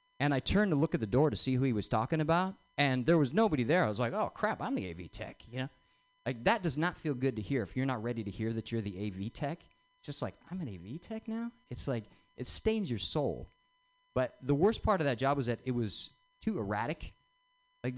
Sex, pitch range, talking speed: male, 120-175 Hz, 260 wpm